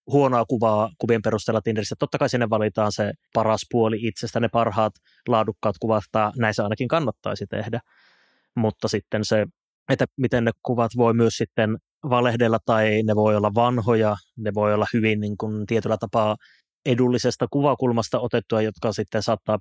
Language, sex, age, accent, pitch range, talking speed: Finnish, male, 20-39, native, 110-125 Hz, 160 wpm